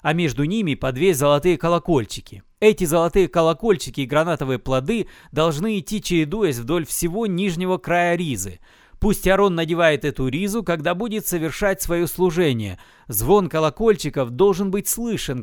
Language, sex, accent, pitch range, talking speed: Russian, male, native, 145-185 Hz, 140 wpm